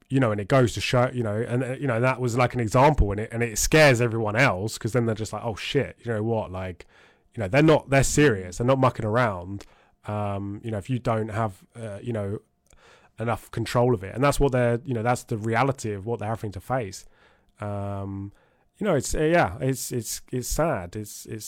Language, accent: English, British